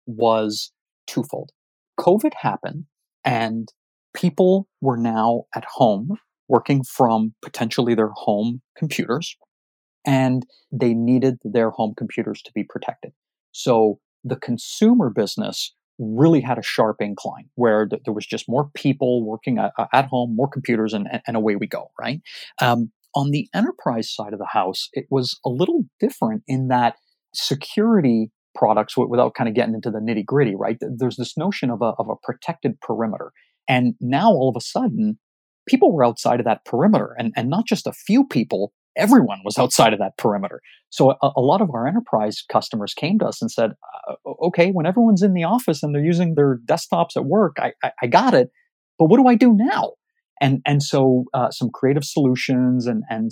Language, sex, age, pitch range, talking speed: English, male, 30-49, 115-170 Hz, 175 wpm